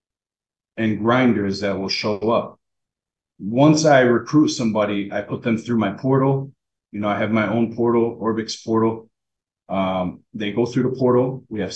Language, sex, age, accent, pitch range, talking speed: English, male, 30-49, American, 100-120 Hz, 170 wpm